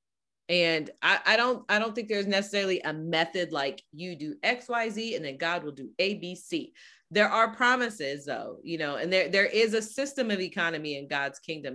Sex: female